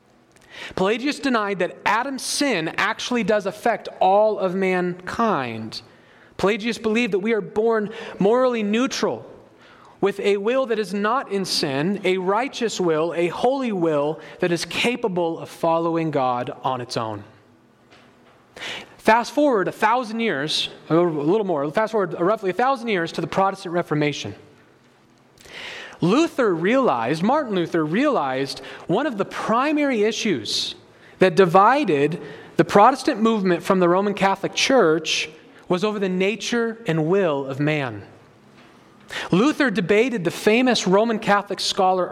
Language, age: English, 30-49